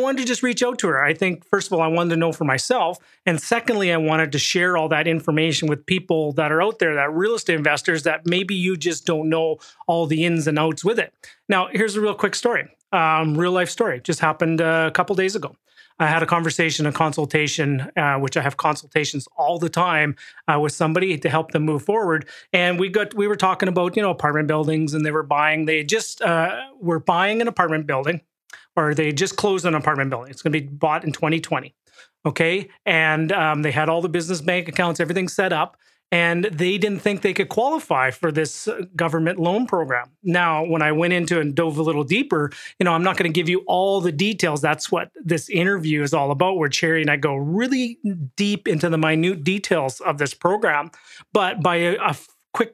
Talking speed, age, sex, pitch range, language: 225 wpm, 30-49, male, 155-185 Hz, English